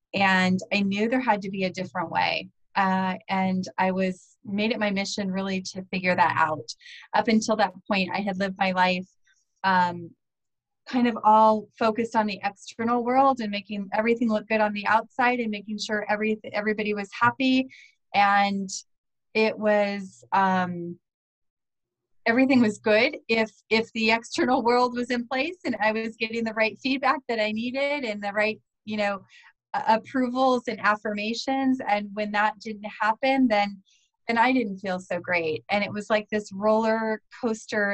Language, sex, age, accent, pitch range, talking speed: English, female, 30-49, American, 190-225 Hz, 170 wpm